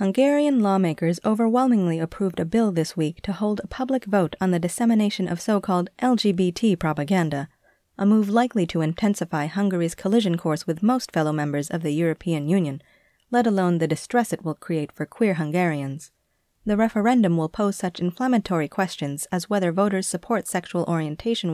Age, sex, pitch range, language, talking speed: 30-49, female, 160-215 Hz, English, 165 wpm